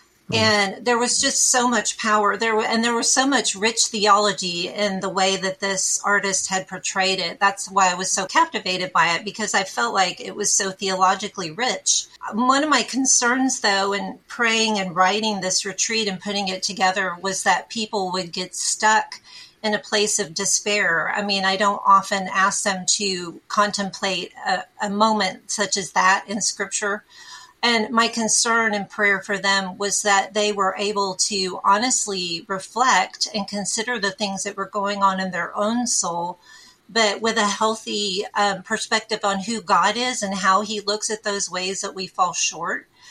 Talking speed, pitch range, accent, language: 185 wpm, 195-220 Hz, American, English